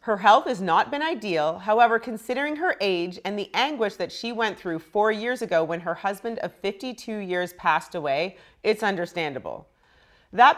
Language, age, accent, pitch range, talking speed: English, 40-59, American, 185-250 Hz, 175 wpm